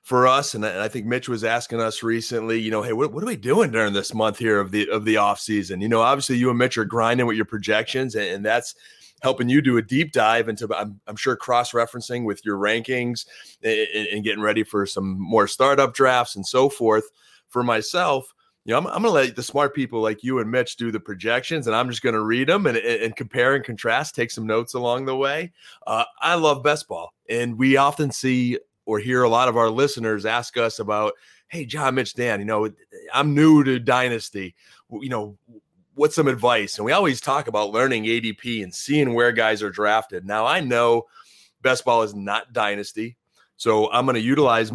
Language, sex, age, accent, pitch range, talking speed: English, male, 30-49, American, 110-130 Hz, 225 wpm